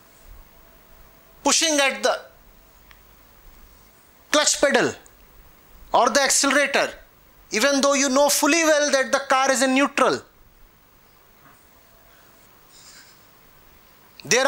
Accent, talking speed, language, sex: Indian, 85 wpm, English, male